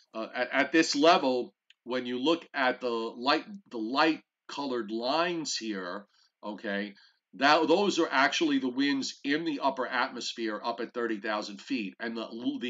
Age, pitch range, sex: 50-69, 120-180 Hz, male